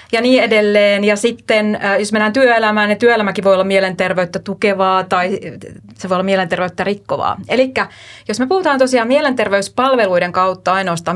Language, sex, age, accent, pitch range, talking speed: Finnish, female, 30-49, native, 190-240 Hz, 150 wpm